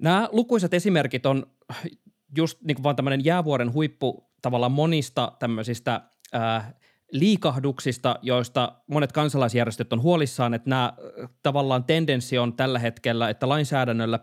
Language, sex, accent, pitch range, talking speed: Finnish, male, native, 120-160 Hz, 120 wpm